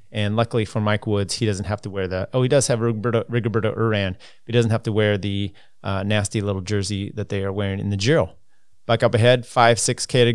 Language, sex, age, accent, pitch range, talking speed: English, male, 30-49, American, 105-125 Hz, 245 wpm